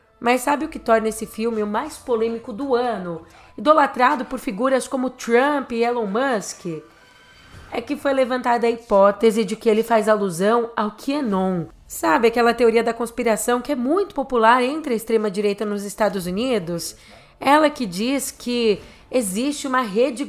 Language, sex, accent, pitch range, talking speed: Portuguese, female, Brazilian, 215-265 Hz, 165 wpm